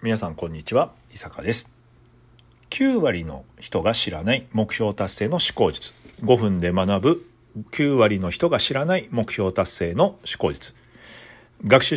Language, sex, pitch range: Japanese, male, 110-160 Hz